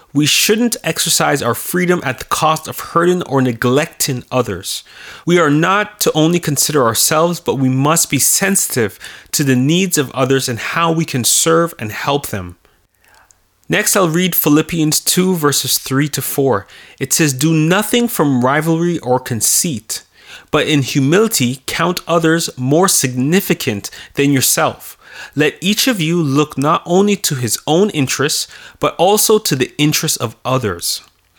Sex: male